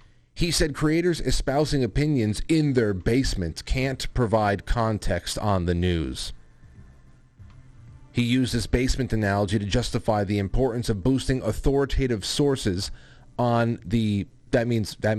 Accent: American